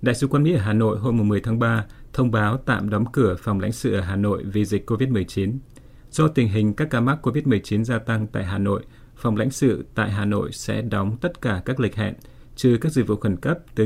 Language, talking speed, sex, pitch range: Vietnamese, 245 wpm, male, 105-125 Hz